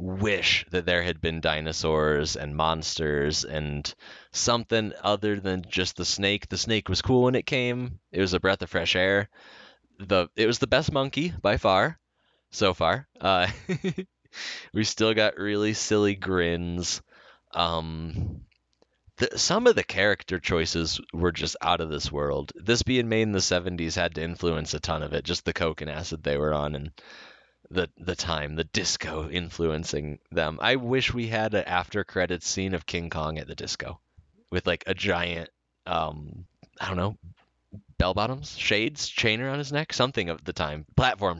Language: English